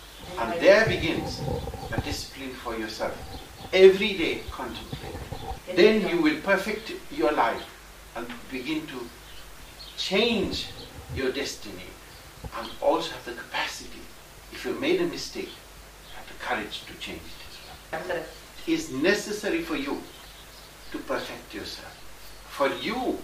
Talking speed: 130 wpm